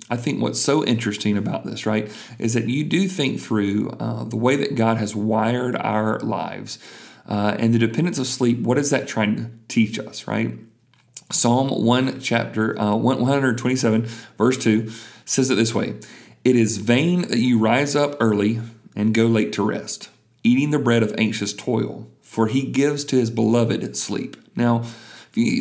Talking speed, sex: 180 wpm, male